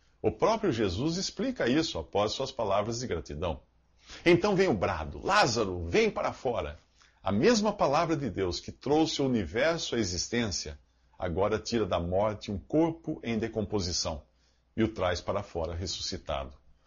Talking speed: 155 wpm